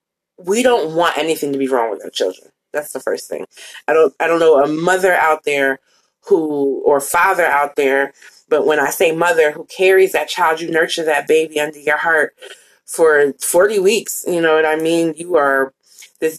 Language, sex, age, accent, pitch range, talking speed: English, female, 20-39, American, 150-185 Hz, 200 wpm